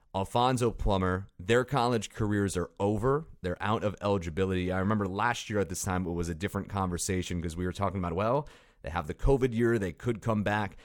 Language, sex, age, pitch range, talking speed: English, male, 30-49, 95-120 Hz, 210 wpm